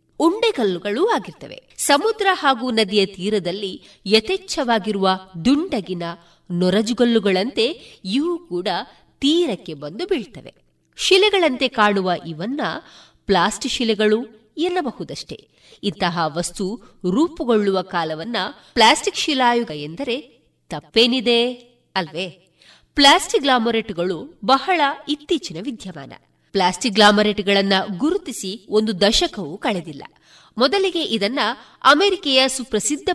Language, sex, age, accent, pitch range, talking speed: Kannada, female, 30-49, native, 190-280 Hz, 80 wpm